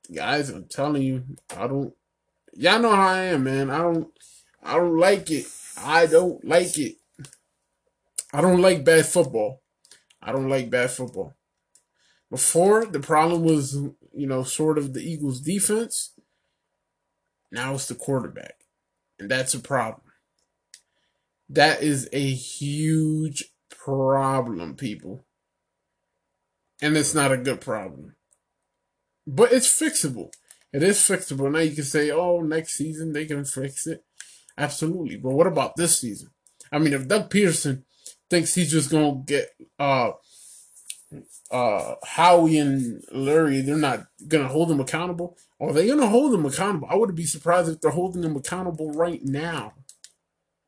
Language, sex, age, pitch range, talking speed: English, male, 20-39, 135-175 Hz, 150 wpm